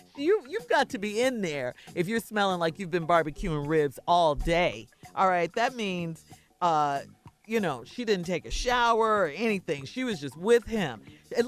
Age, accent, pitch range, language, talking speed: 40-59, American, 180-290 Hz, English, 195 wpm